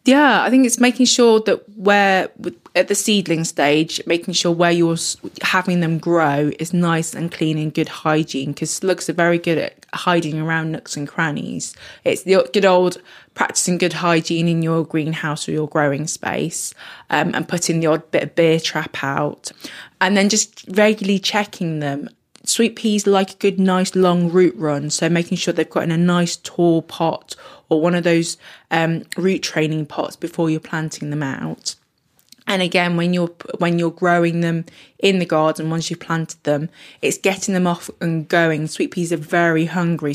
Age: 20-39